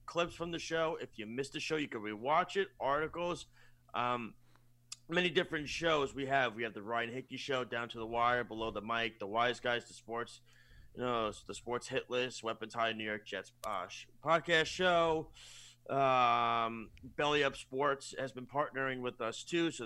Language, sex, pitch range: English, male, 110-135 Hz